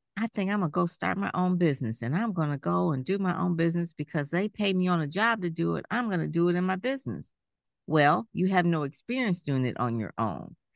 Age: 50-69